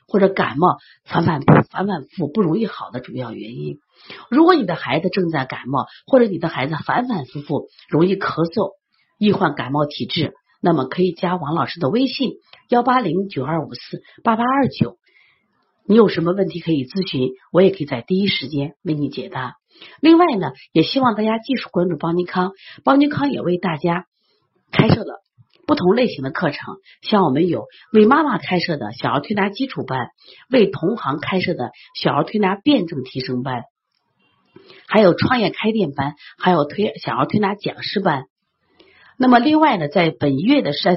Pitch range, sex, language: 150-230 Hz, female, Chinese